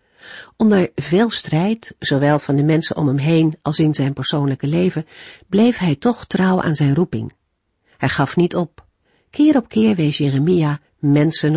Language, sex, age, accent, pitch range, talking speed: Dutch, female, 50-69, Dutch, 140-195 Hz, 165 wpm